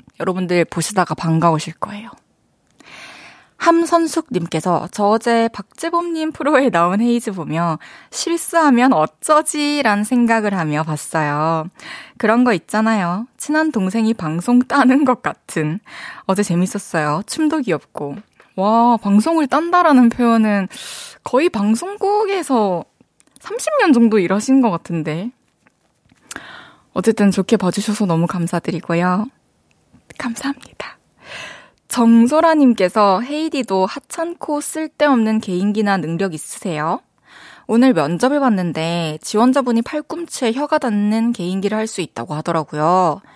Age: 20-39